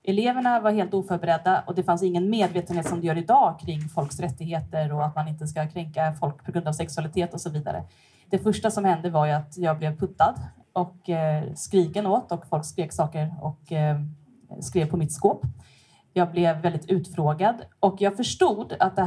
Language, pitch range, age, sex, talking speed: Swedish, 155-190 Hz, 30-49, female, 190 wpm